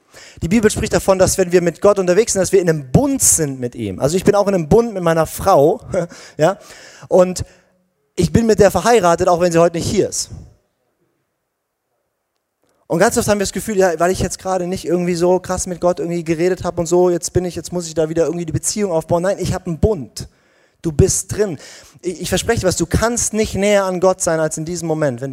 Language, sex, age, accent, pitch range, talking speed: German, male, 30-49, German, 160-190 Hz, 240 wpm